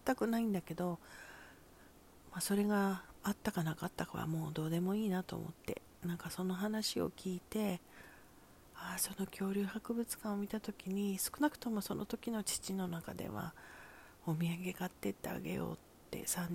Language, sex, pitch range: Japanese, female, 165-195 Hz